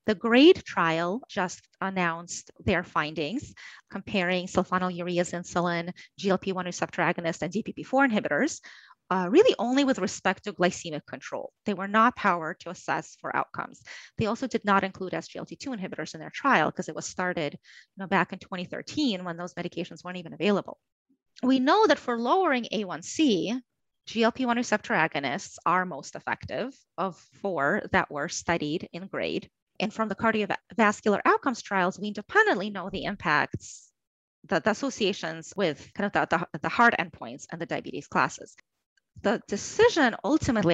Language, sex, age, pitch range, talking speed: English, female, 30-49, 180-245 Hz, 150 wpm